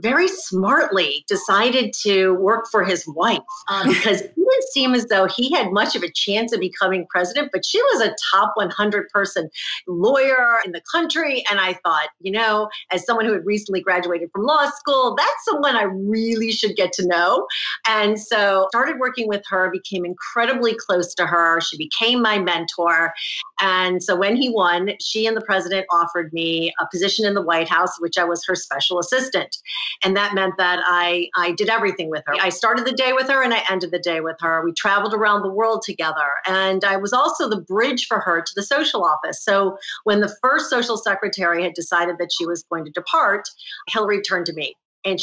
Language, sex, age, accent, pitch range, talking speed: English, female, 40-59, American, 175-225 Hz, 205 wpm